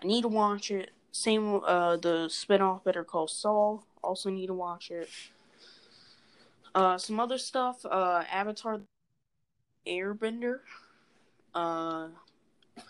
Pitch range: 170-215 Hz